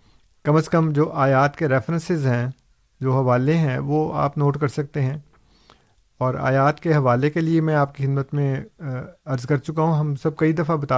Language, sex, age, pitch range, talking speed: Urdu, male, 50-69, 130-155 Hz, 200 wpm